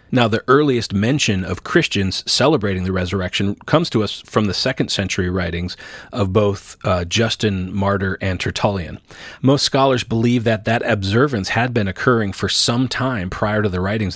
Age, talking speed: 30-49, 170 wpm